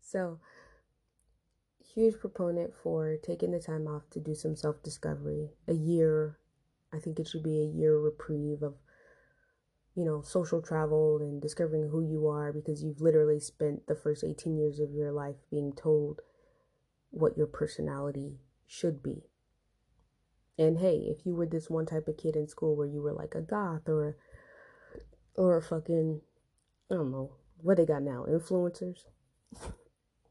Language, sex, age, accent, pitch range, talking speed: English, female, 20-39, American, 150-175 Hz, 160 wpm